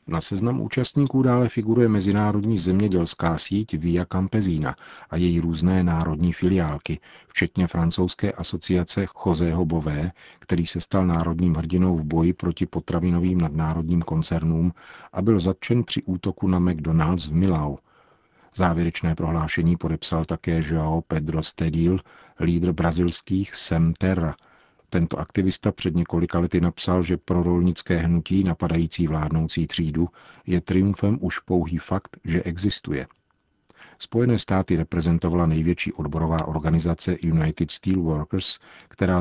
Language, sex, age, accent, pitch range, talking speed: Czech, male, 40-59, native, 80-95 Hz, 120 wpm